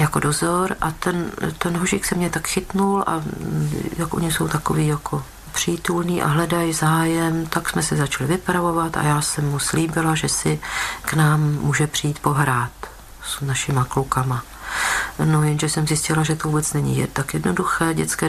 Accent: native